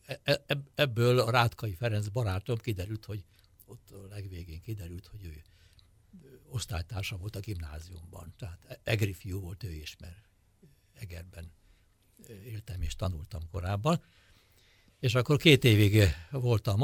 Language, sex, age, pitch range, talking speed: Hungarian, male, 60-79, 95-120 Hz, 120 wpm